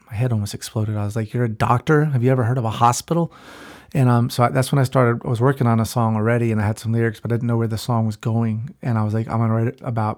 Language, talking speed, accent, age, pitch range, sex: English, 325 wpm, American, 30-49, 110-125 Hz, male